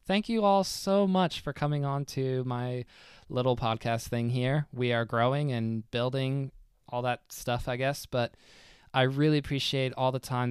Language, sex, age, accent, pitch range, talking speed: English, male, 20-39, American, 115-130 Hz, 175 wpm